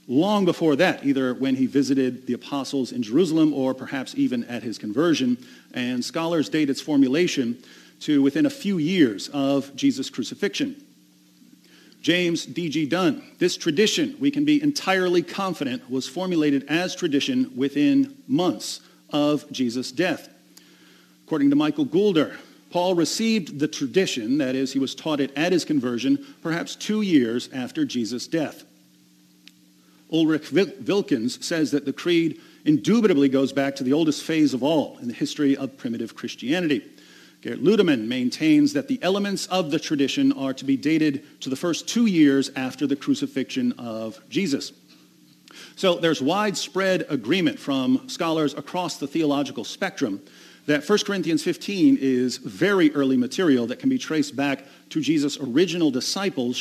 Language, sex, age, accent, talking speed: English, male, 50-69, American, 150 wpm